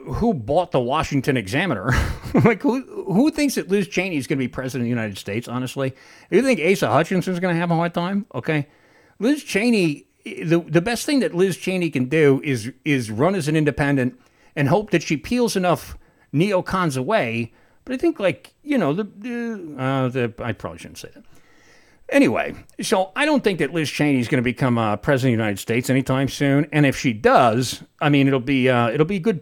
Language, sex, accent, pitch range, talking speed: English, male, American, 125-180 Hz, 210 wpm